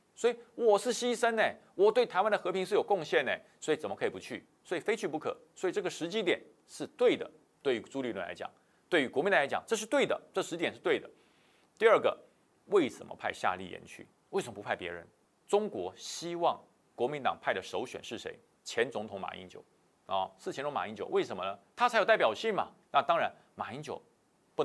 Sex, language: male, Chinese